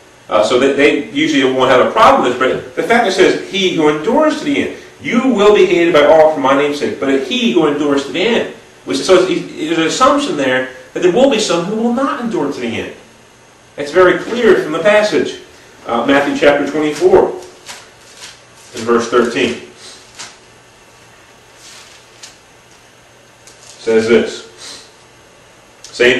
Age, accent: 40-59, American